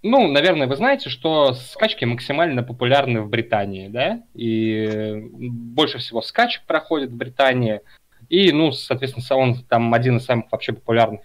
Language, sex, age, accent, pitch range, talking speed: Russian, male, 20-39, native, 110-145 Hz, 150 wpm